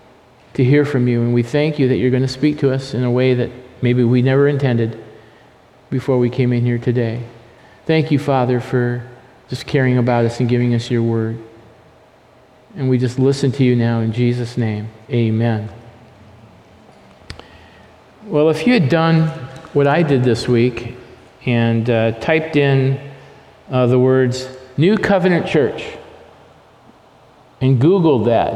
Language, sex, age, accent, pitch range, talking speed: English, male, 50-69, American, 120-145 Hz, 160 wpm